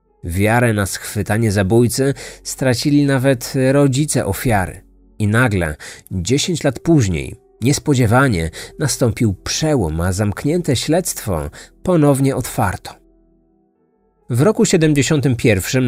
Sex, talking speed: male, 90 wpm